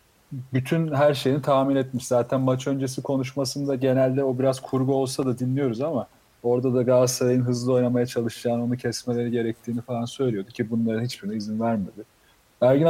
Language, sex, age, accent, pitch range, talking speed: Turkish, male, 40-59, native, 120-150 Hz, 160 wpm